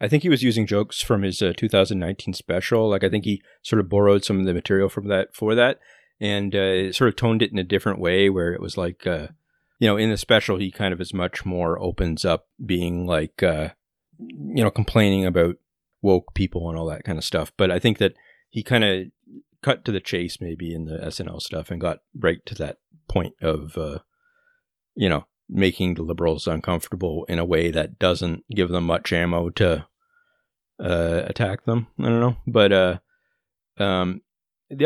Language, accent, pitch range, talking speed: English, American, 85-105 Hz, 205 wpm